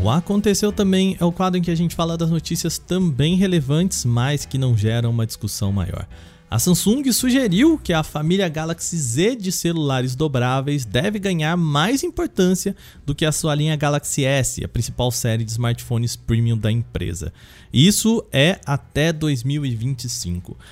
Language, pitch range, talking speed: Portuguese, 130-180 Hz, 160 wpm